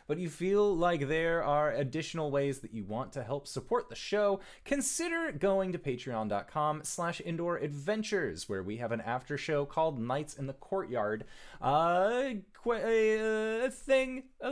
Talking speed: 155 wpm